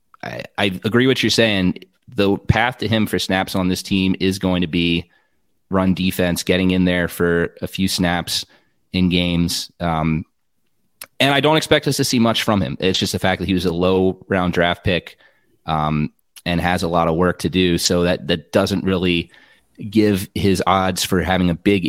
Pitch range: 85-100 Hz